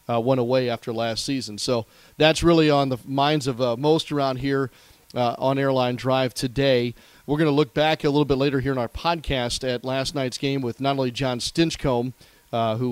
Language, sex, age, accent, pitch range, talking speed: English, male, 40-59, American, 125-145 Hz, 215 wpm